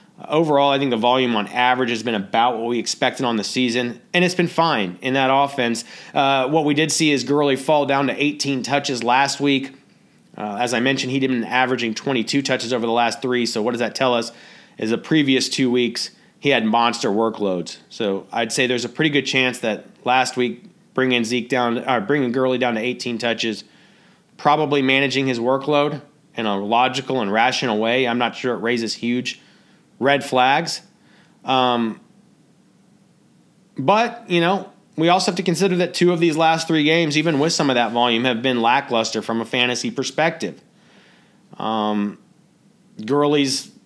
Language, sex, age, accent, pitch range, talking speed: English, male, 30-49, American, 120-170 Hz, 185 wpm